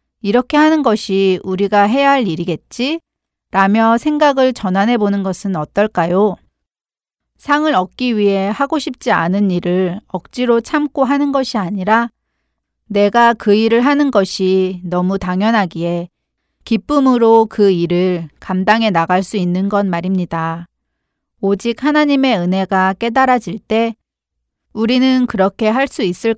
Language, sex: Korean, female